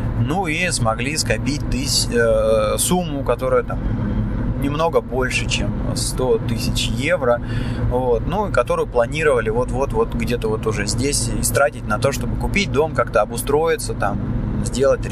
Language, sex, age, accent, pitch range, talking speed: Russian, male, 20-39, native, 115-130 Hz, 140 wpm